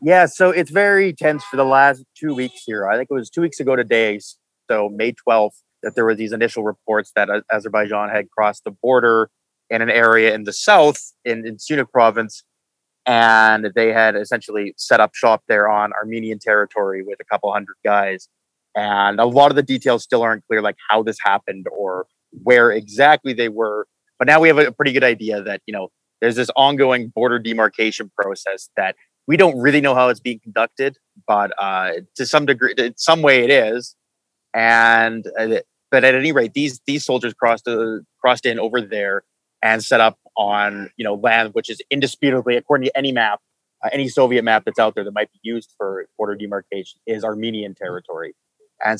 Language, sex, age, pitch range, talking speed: English, male, 30-49, 110-135 Hz, 195 wpm